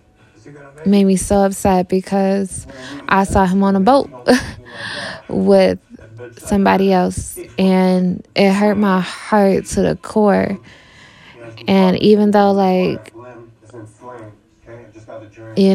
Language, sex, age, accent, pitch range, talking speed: English, female, 20-39, American, 165-195 Hz, 105 wpm